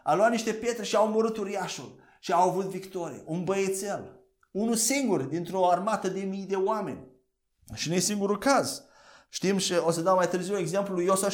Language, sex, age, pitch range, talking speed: Romanian, male, 30-49, 175-225 Hz, 190 wpm